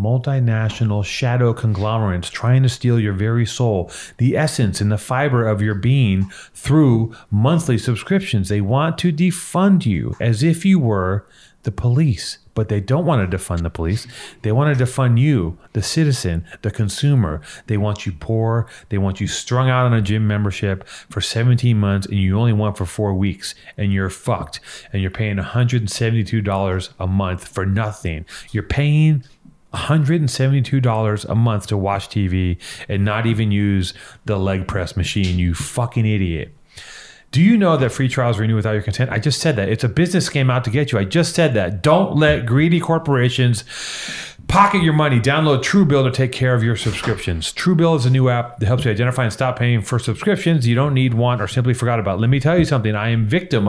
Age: 30-49